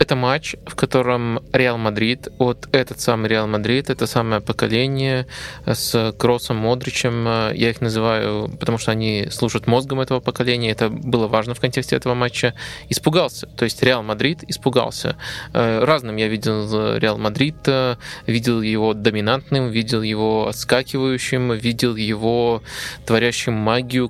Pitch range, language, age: 115-130 Hz, Russian, 20-39